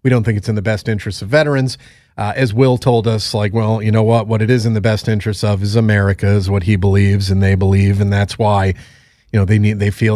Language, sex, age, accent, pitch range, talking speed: English, male, 30-49, American, 105-125 Hz, 270 wpm